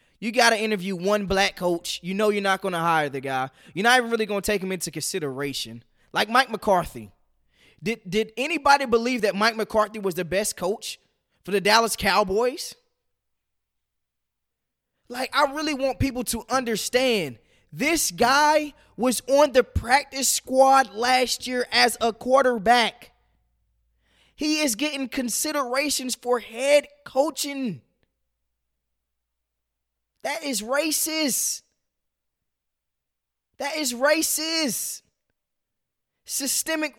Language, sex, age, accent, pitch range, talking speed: English, male, 20-39, American, 165-260 Hz, 125 wpm